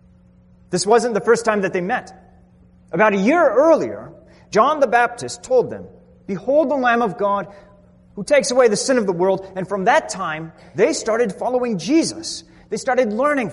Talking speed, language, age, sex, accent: 180 wpm, English, 30-49, male, American